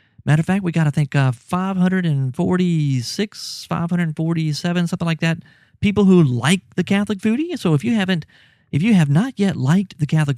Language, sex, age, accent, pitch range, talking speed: English, male, 40-59, American, 130-185 Hz, 225 wpm